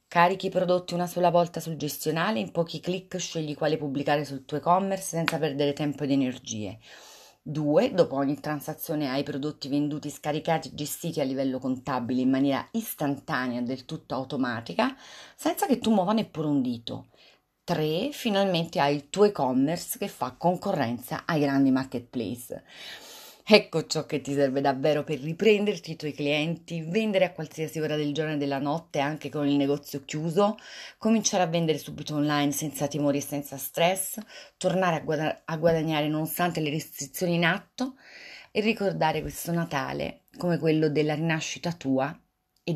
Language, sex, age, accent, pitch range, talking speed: Italian, female, 30-49, native, 140-170 Hz, 160 wpm